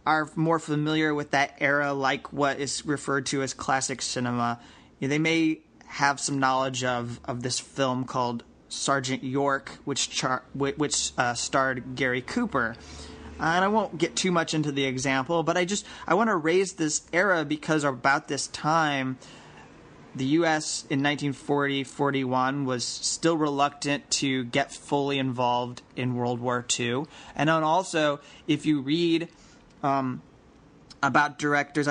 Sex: male